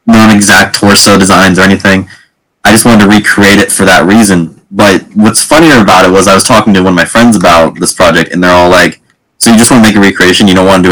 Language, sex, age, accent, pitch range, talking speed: English, male, 20-39, American, 90-110 Hz, 265 wpm